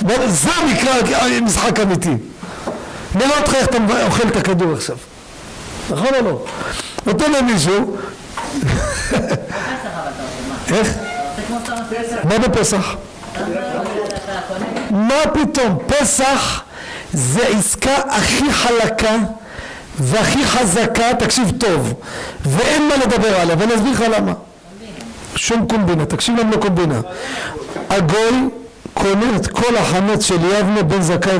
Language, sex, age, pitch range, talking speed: Hebrew, male, 50-69, 185-255 Hz, 100 wpm